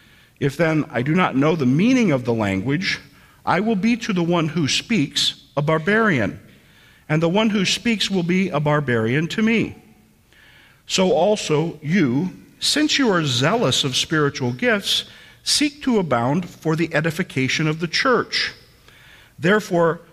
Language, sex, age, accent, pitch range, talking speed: English, male, 50-69, American, 135-200 Hz, 155 wpm